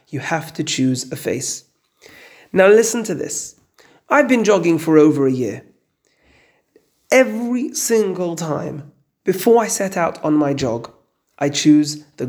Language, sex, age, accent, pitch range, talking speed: English, male, 30-49, British, 145-225 Hz, 145 wpm